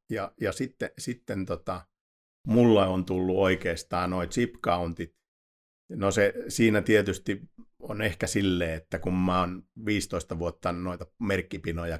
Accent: native